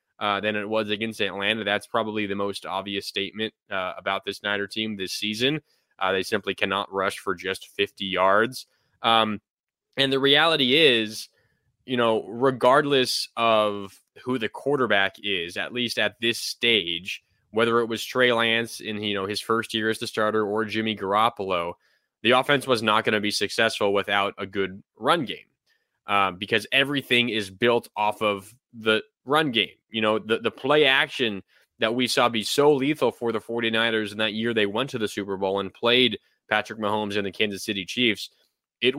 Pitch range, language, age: 105-125 Hz, English, 20-39